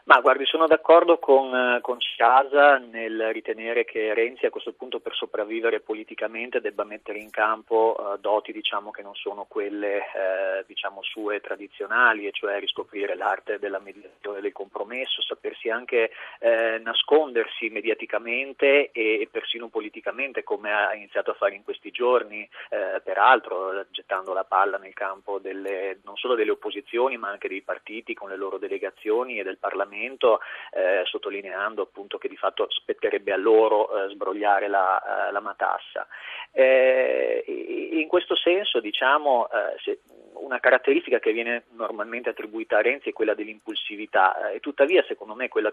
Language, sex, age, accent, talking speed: Italian, male, 30-49, native, 150 wpm